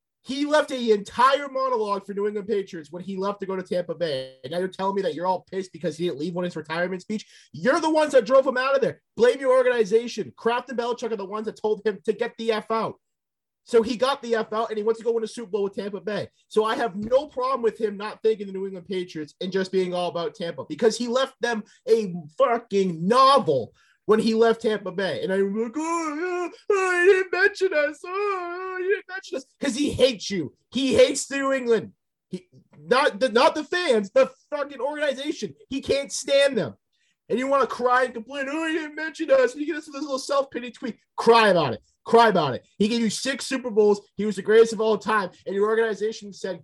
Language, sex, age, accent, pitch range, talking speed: English, male, 30-49, American, 200-270 Hz, 245 wpm